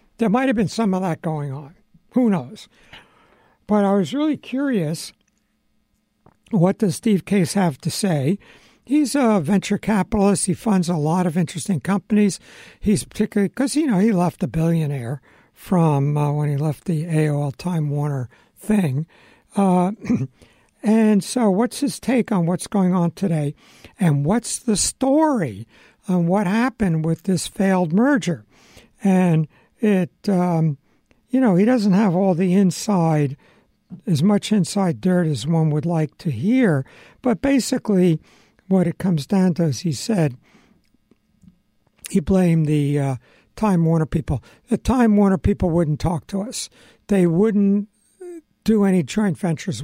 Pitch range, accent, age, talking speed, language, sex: 160-210 Hz, American, 60-79, 155 wpm, English, male